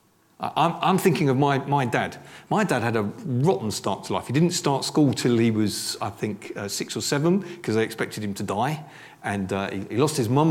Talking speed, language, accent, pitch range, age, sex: 230 wpm, English, British, 120-160 Hz, 40-59, male